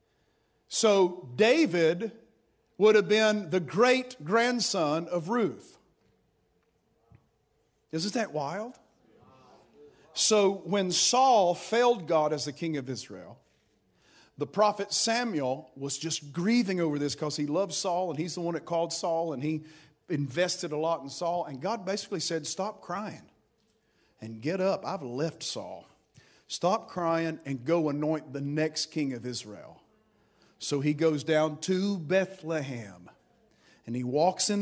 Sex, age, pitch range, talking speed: male, 50-69, 140-180 Hz, 140 wpm